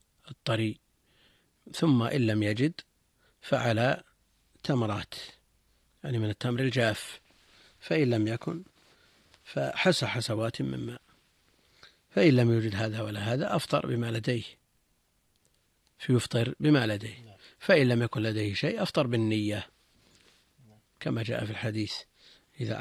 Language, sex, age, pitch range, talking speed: Arabic, male, 50-69, 110-125 Hz, 110 wpm